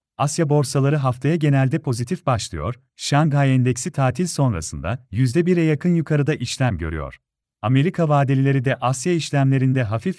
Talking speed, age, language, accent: 125 wpm, 40-59, Turkish, native